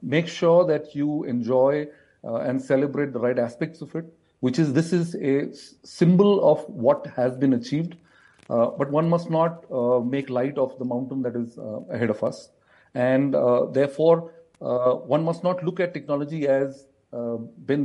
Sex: male